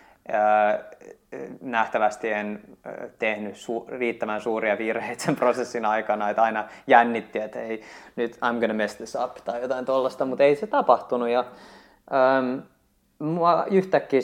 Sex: male